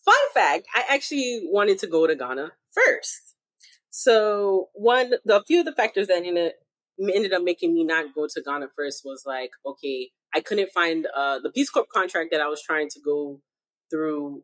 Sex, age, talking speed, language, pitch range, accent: female, 30-49, 195 wpm, English, 150-195 Hz, American